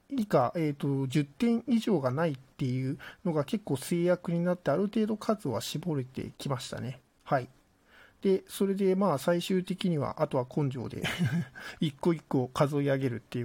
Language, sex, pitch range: Japanese, male, 130-180 Hz